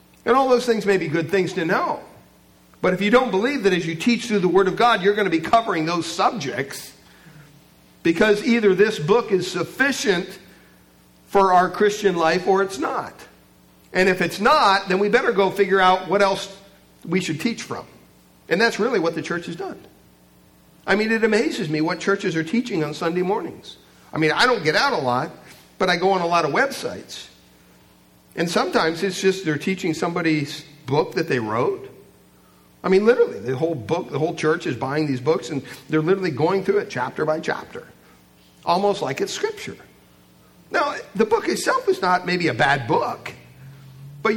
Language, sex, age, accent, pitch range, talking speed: English, male, 50-69, American, 125-200 Hz, 195 wpm